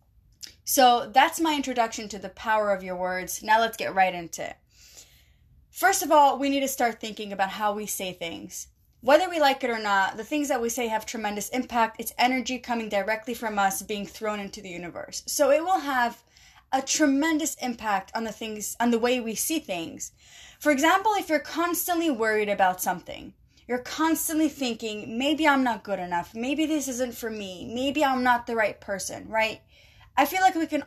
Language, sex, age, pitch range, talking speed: English, female, 20-39, 205-285 Hz, 200 wpm